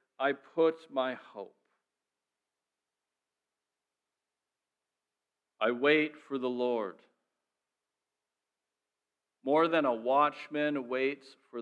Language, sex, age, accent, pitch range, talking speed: English, male, 50-69, American, 90-150 Hz, 75 wpm